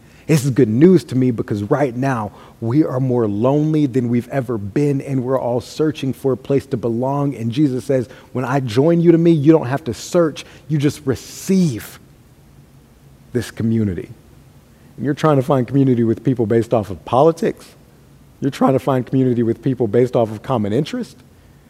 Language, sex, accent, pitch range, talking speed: English, male, American, 115-150 Hz, 190 wpm